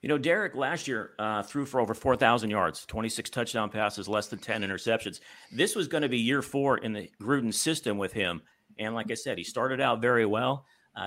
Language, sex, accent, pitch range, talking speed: English, male, American, 110-135 Hz, 220 wpm